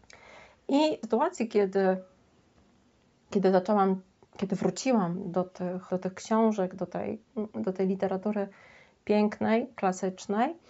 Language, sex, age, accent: Polish, female, 30-49, native